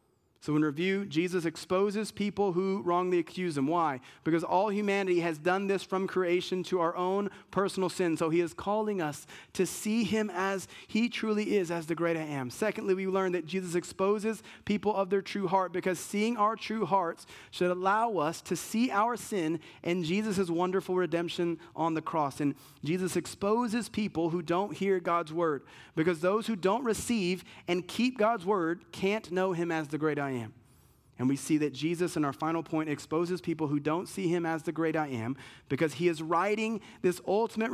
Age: 30-49